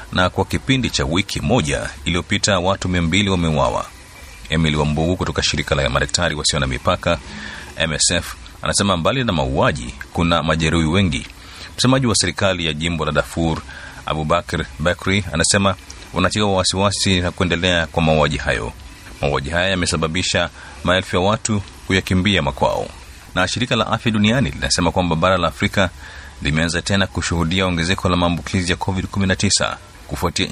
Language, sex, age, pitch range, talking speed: Swahili, male, 30-49, 80-95 Hz, 140 wpm